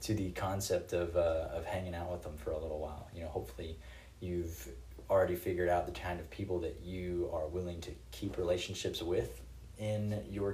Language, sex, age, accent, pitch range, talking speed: English, male, 20-39, American, 80-90 Hz, 200 wpm